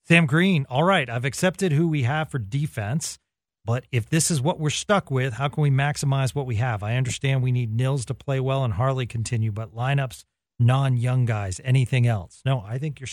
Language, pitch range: English, 120-150 Hz